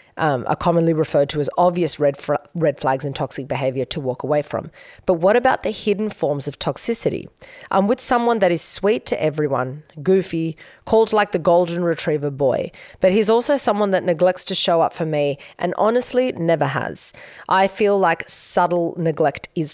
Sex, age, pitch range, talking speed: female, 30-49, 145-185 Hz, 190 wpm